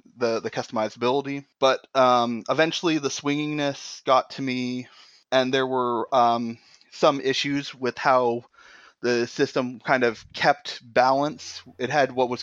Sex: male